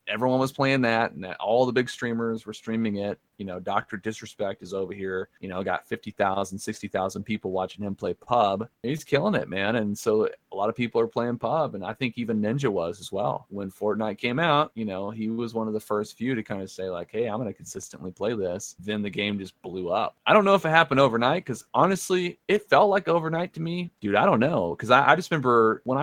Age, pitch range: 30-49, 95-125 Hz